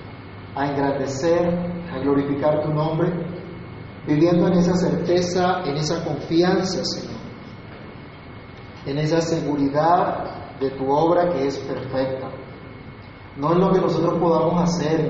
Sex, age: male, 40-59